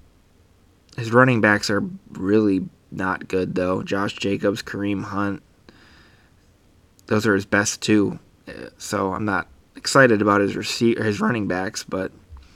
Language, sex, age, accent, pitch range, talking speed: English, male, 20-39, American, 100-120 Hz, 135 wpm